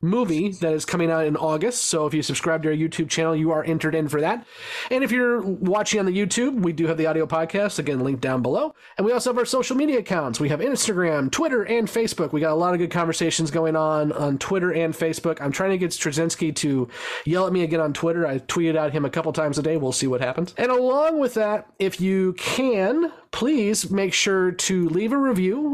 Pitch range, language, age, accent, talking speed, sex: 160-210 Hz, English, 30-49, American, 240 wpm, male